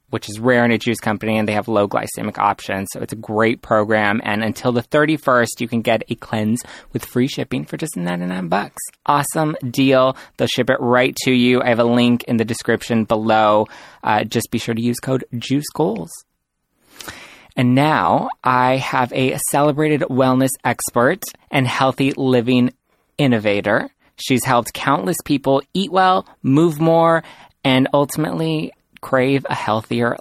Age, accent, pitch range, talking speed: 20-39, American, 115-145 Hz, 165 wpm